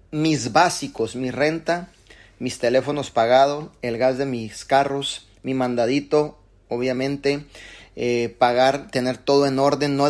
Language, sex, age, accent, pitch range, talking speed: Spanish, male, 30-49, Mexican, 125-155 Hz, 130 wpm